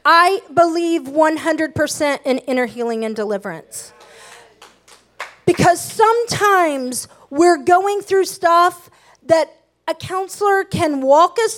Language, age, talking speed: English, 40-59, 105 wpm